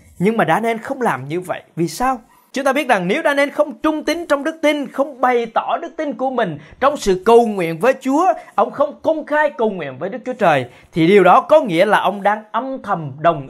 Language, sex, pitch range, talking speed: Vietnamese, male, 170-285 Hz, 245 wpm